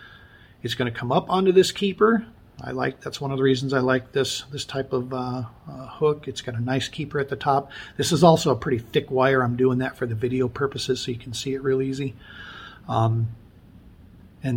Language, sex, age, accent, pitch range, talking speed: English, male, 40-59, American, 125-160 Hz, 225 wpm